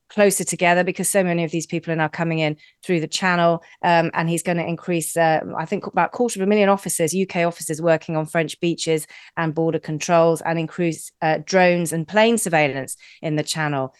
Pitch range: 160-190 Hz